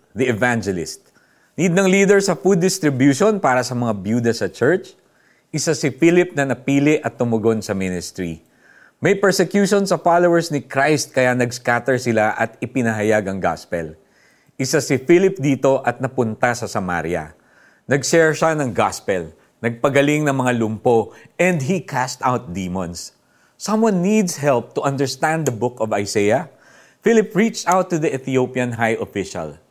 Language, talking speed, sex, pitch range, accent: Filipino, 150 wpm, male, 110-165 Hz, native